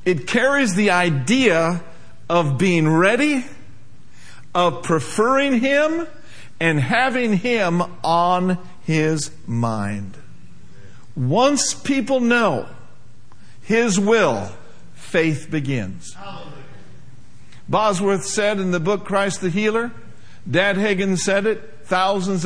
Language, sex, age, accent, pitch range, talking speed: English, male, 50-69, American, 130-205 Hz, 95 wpm